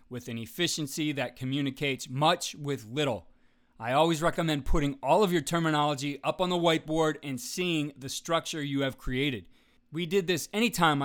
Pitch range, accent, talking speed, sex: 135-175 Hz, American, 170 wpm, male